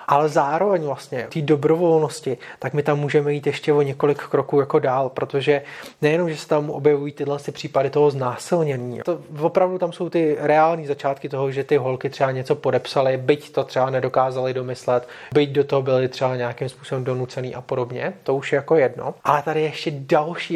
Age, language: 30-49, Czech